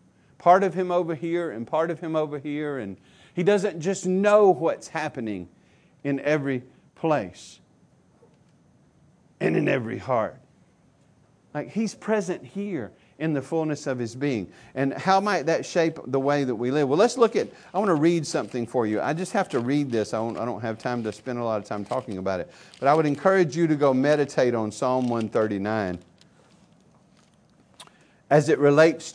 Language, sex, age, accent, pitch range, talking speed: English, male, 50-69, American, 120-170 Hz, 185 wpm